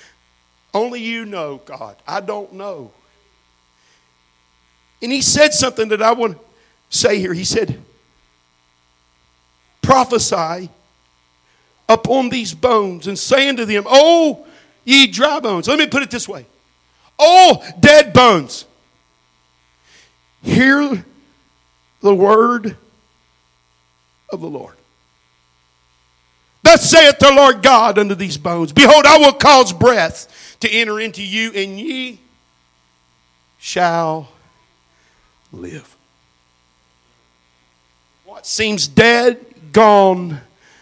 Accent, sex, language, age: American, male, English, 50-69